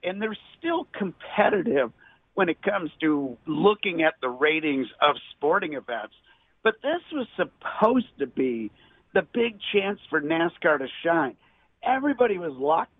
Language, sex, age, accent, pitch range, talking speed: English, male, 50-69, American, 135-195 Hz, 145 wpm